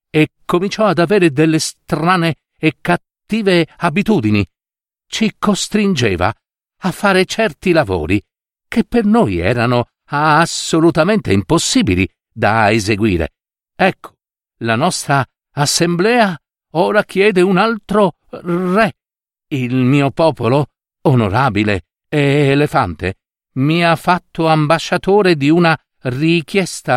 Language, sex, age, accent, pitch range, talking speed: Italian, male, 50-69, native, 115-175 Hz, 100 wpm